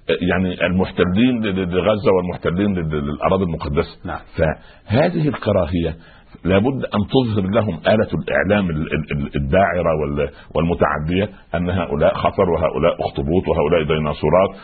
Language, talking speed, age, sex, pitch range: Arabic, 100 wpm, 60-79, male, 80-110 Hz